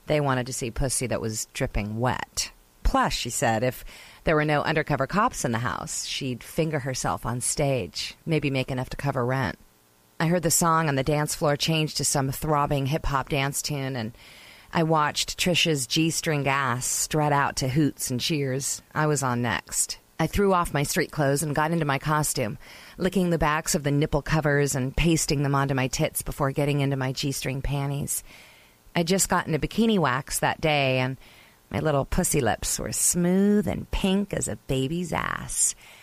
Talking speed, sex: 190 wpm, female